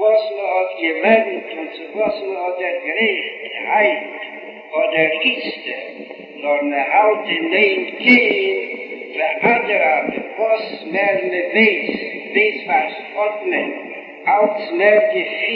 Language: Hebrew